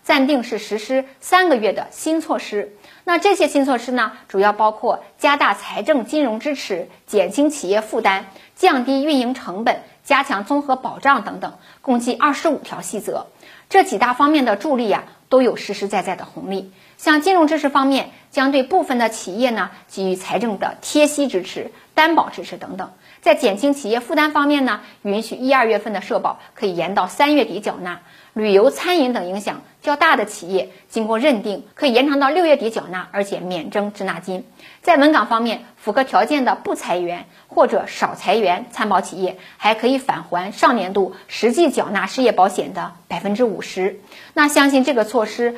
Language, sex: Chinese, female